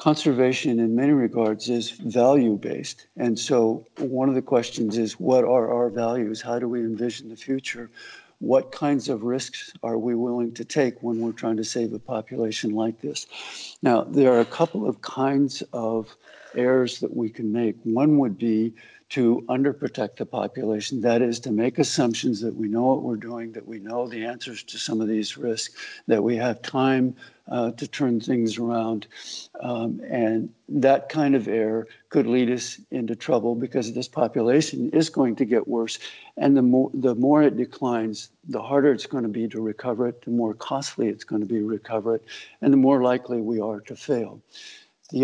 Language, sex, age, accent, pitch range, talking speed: English, male, 60-79, American, 115-130 Hz, 190 wpm